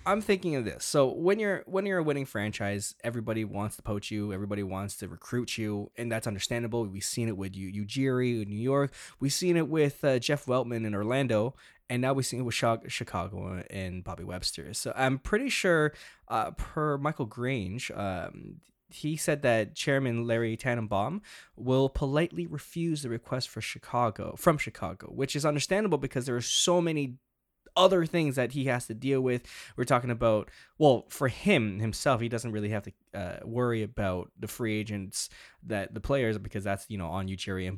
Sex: male